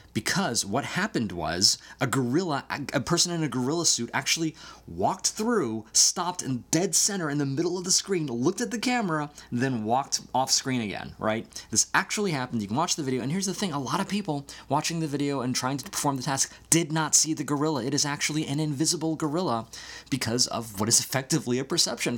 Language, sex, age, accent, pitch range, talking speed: English, male, 20-39, American, 105-150 Hz, 215 wpm